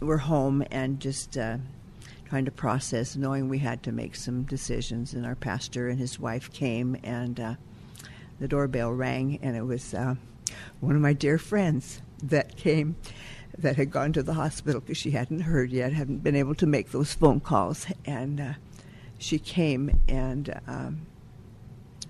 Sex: female